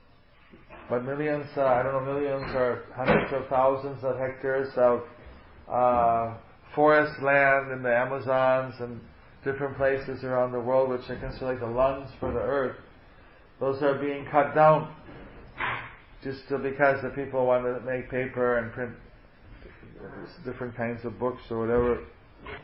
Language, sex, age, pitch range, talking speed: English, male, 50-69, 125-140 Hz, 150 wpm